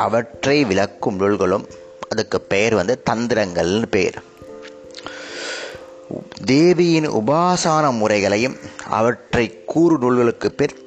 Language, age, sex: Tamil, 30-49, male